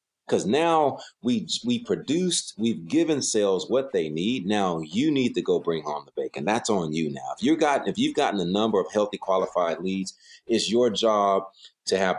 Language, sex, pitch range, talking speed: English, male, 95-155 Hz, 190 wpm